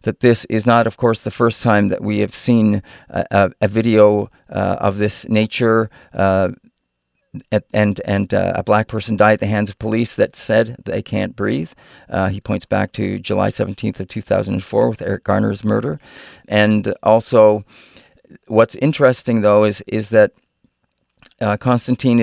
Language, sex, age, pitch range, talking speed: English, male, 50-69, 105-120 Hz, 180 wpm